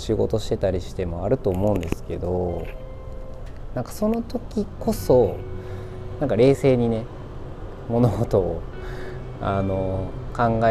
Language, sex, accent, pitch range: Japanese, male, native, 90-115 Hz